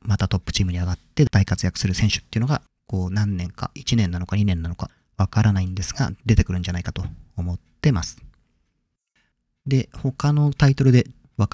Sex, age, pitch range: male, 40-59, 90-120 Hz